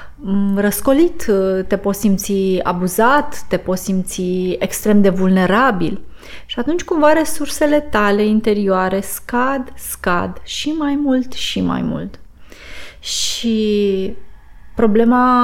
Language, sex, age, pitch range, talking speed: Romanian, female, 20-39, 195-245 Hz, 105 wpm